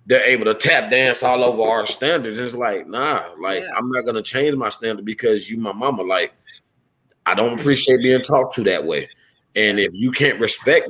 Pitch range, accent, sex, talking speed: 120-150 Hz, American, male, 210 wpm